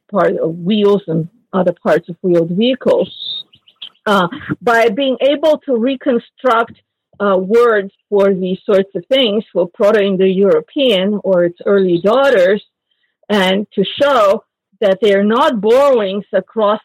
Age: 50-69